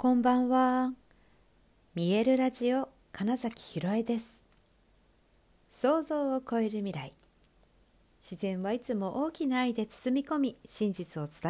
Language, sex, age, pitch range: Japanese, female, 60-79, 165-245 Hz